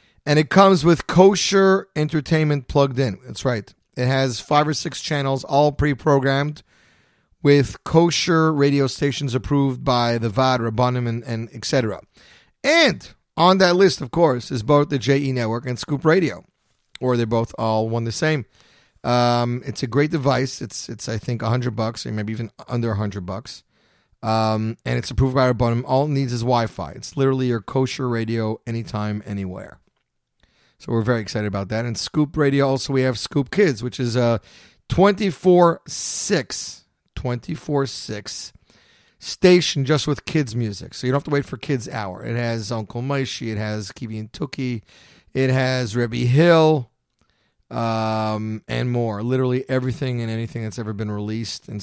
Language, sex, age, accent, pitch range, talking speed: English, male, 30-49, American, 110-145 Hz, 165 wpm